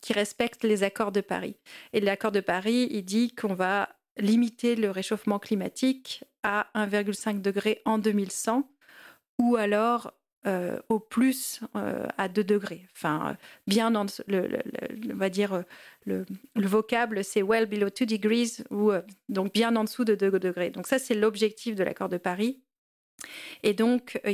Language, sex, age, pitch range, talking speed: French, female, 40-59, 200-235 Hz, 180 wpm